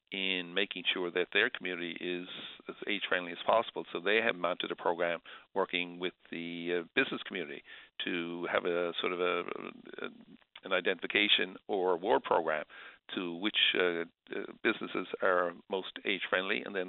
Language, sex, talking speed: English, male, 145 wpm